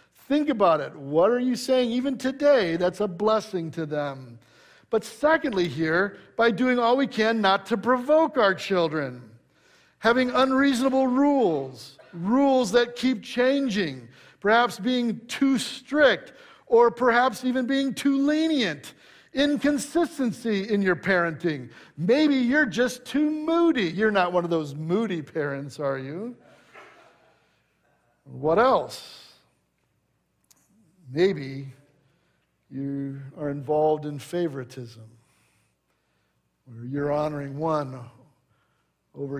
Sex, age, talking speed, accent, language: male, 50-69, 115 wpm, American, English